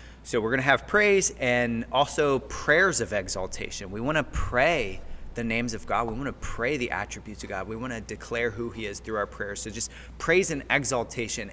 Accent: American